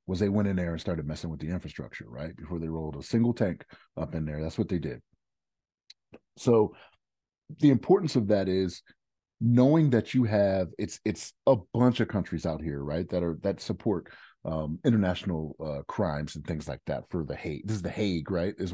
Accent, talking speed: American, 210 wpm